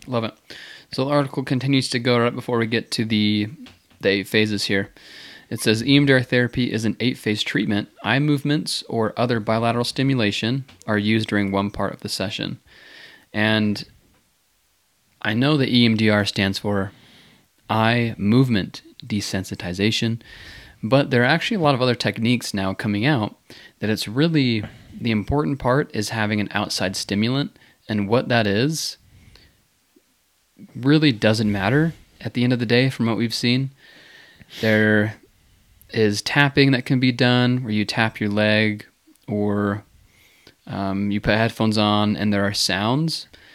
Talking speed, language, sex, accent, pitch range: 155 wpm, English, male, American, 105-125 Hz